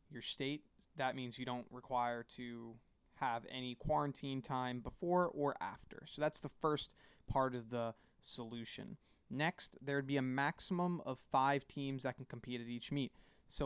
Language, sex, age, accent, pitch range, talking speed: English, male, 20-39, American, 125-150 Hz, 170 wpm